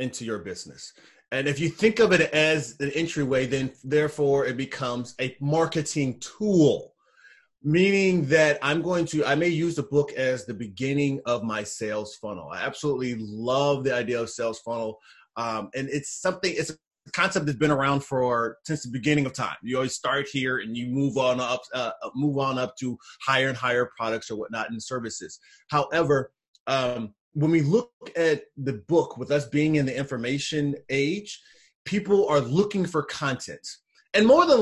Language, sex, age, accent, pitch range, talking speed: English, male, 30-49, American, 130-175 Hz, 180 wpm